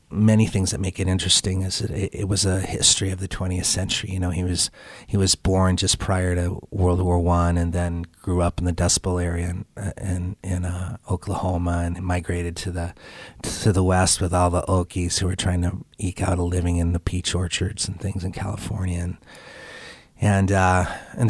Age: 30-49